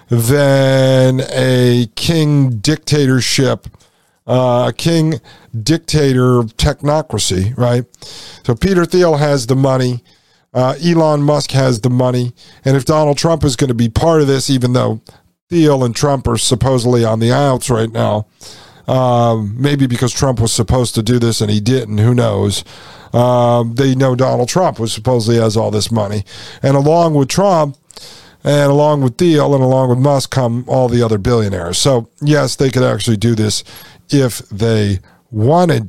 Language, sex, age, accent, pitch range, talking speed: English, male, 50-69, American, 120-150 Hz, 160 wpm